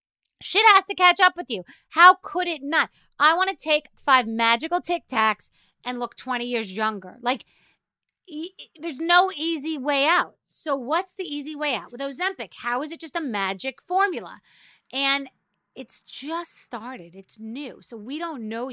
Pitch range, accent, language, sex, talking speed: 195-275 Hz, American, English, female, 175 wpm